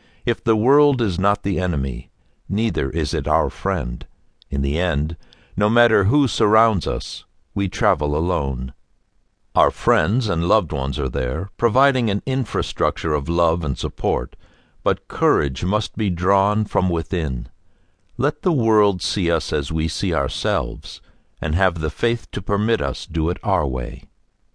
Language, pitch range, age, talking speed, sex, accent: English, 75-105 Hz, 60-79, 155 wpm, male, American